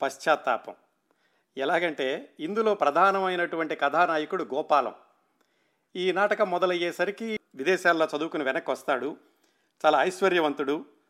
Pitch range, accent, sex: 145-175 Hz, native, male